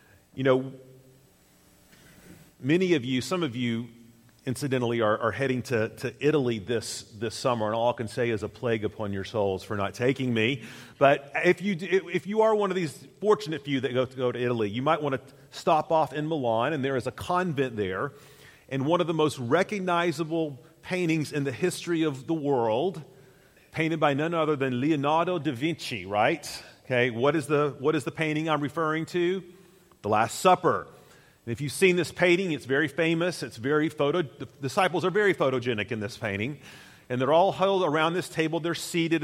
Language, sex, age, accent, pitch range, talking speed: English, male, 40-59, American, 125-165 Hz, 195 wpm